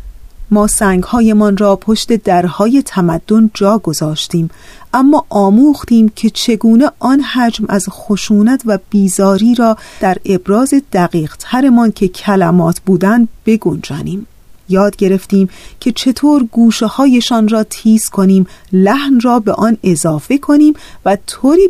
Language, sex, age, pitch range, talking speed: Persian, female, 40-59, 190-240 Hz, 120 wpm